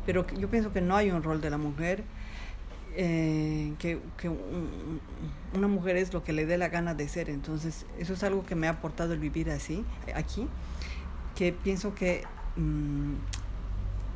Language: Spanish